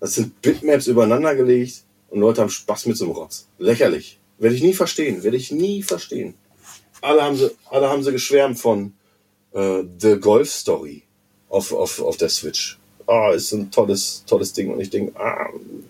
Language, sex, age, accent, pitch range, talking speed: German, male, 40-59, German, 100-140 Hz, 185 wpm